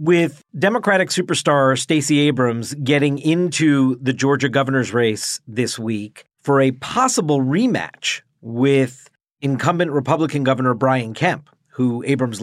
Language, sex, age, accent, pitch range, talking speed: English, male, 40-59, American, 130-155 Hz, 120 wpm